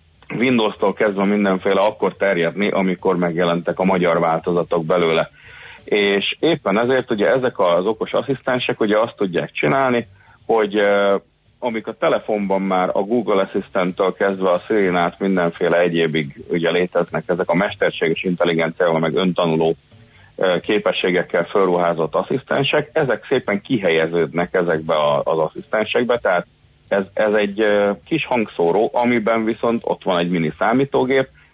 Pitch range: 85-110 Hz